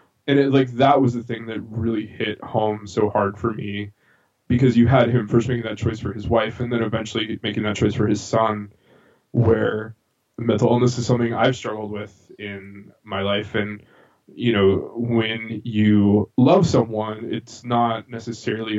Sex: male